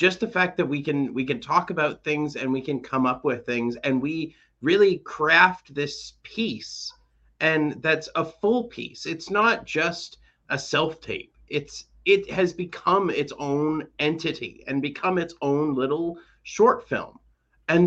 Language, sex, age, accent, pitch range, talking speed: English, male, 30-49, American, 145-185 Hz, 170 wpm